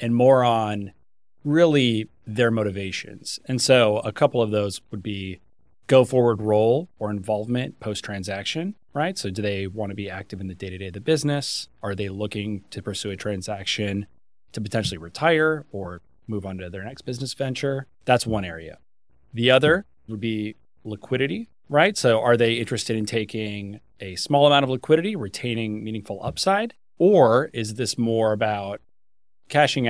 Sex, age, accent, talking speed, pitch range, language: male, 30-49, American, 165 wpm, 100-125 Hz, English